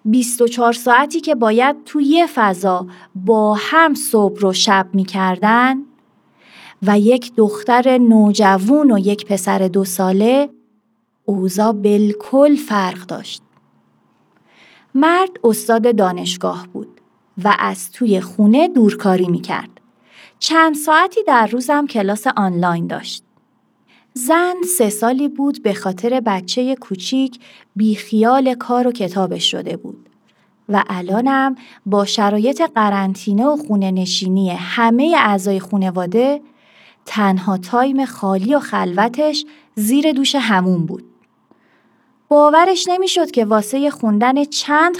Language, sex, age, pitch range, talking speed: Persian, female, 30-49, 200-270 Hz, 115 wpm